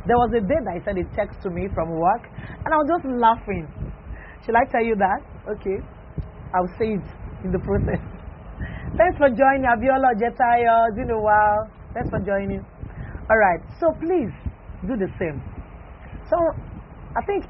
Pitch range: 190-260 Hz